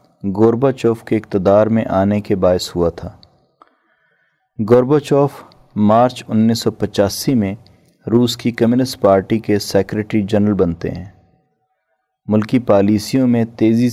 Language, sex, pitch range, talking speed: Urdu, male, 100-125 Hz, 125 wpm